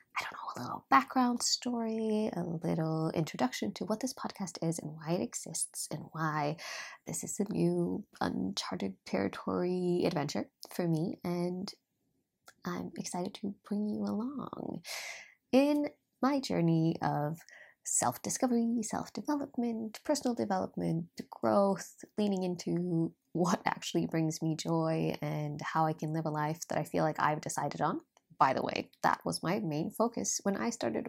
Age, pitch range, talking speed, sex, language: 20-39, 160-225 Hz, 145 wpm, female, English